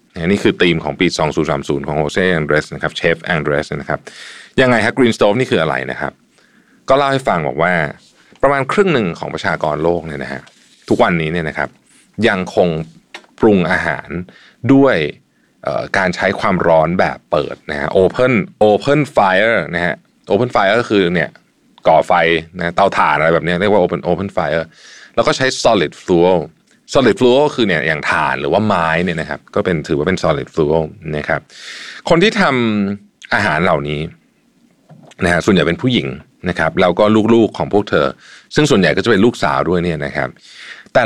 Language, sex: Thai, male